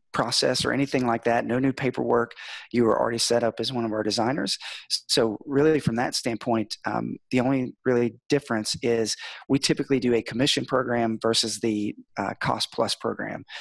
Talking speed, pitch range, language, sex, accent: 180 wpm, 115-130 Hz, English, male, American